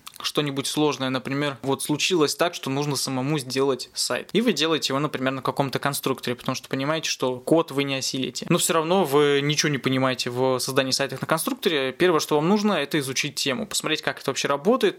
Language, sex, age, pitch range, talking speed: Russian, male, 20-39, 135-175 Hz, 205 wpm